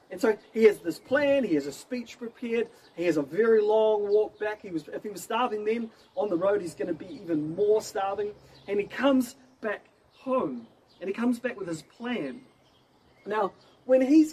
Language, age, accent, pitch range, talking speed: English, 30-49, Australian, 170-245 Hz, 210 wpm